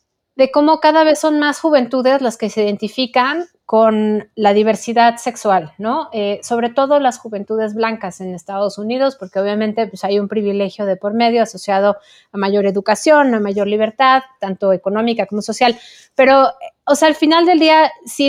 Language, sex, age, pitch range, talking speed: Spanish, female, 30-49, 210-260 Hz, 170 wpm